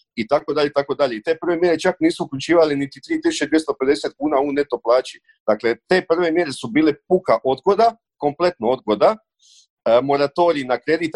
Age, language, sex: 40-59, Croatian, male